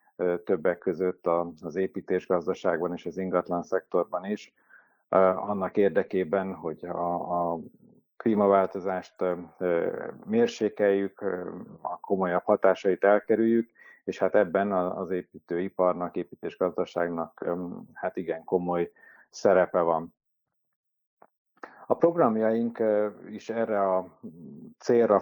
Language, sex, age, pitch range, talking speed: Hungarian, male, 50-69, 90-105 Hz, 85 wpm